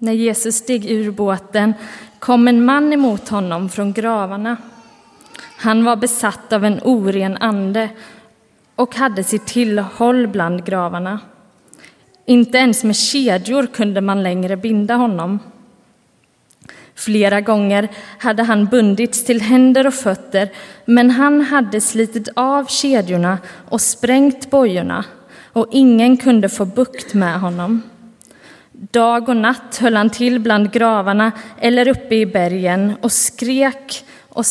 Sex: female